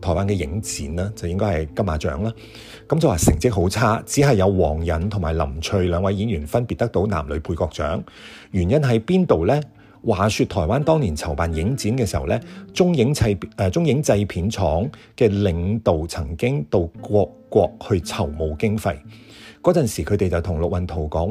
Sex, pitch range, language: male, 85-115 Hz, Chinese